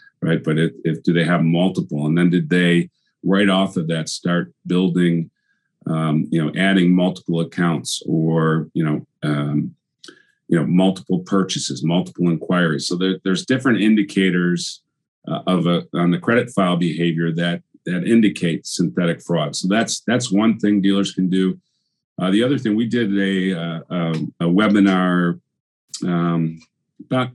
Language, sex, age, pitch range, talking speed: English, male, 40-59, 85-100 Hz, 160 wpm